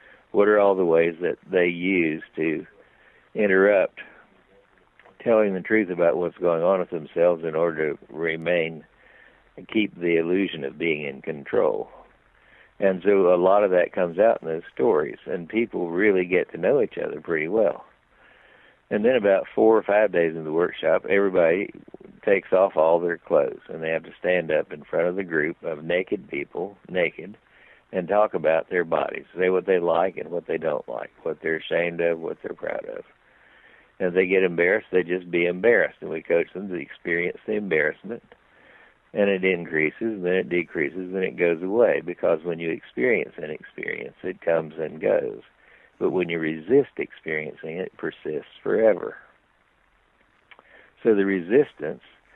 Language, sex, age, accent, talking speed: English, male, 60-79, American, 180 wpm